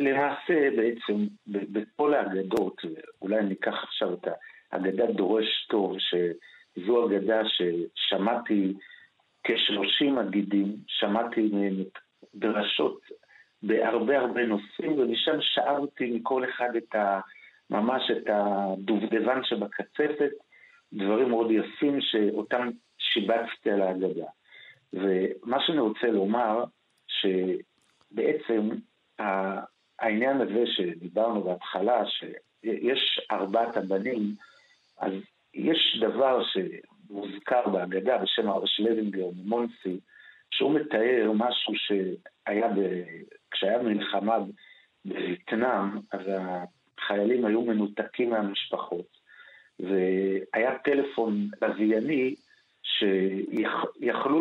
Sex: male